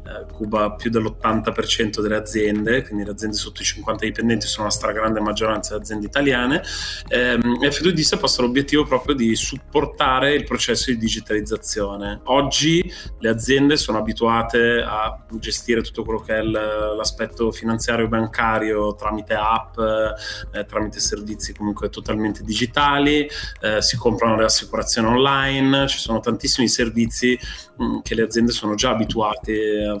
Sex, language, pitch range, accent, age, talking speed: male, Italian, 105-125 Hz, native, 30-49, 140 wpm